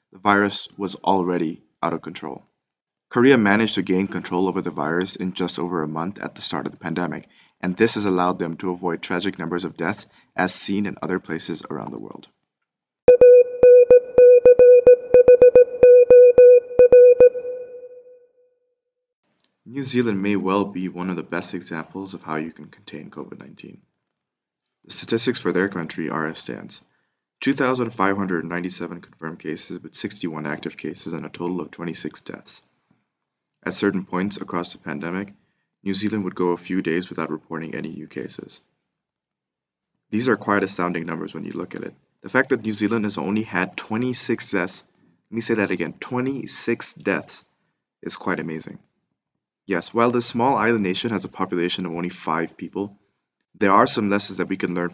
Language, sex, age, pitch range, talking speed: English, male, 20-39, 90-125 Hz, 165 wpm